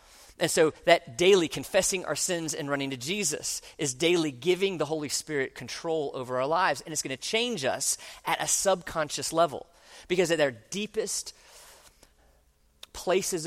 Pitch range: 135-195 Hz